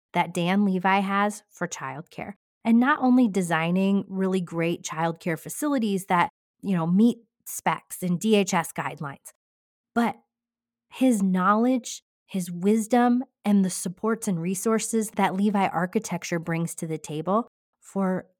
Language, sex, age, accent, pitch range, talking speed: English, female, 30-49, American, 165-210 Hz, 130 wpm